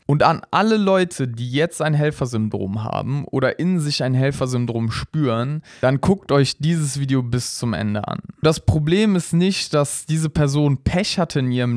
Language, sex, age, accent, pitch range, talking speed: German, male, 20-39, German, 130-160 Hz, 180 wpm